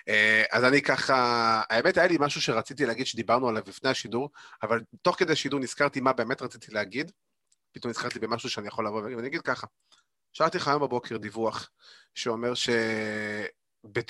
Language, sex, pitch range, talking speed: Hebrew, male, 110-135 Hz, 160 wpm